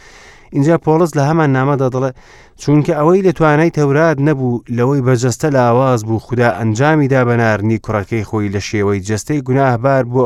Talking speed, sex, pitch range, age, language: 160 wpm, male, 110-135 Hz, 30-49, English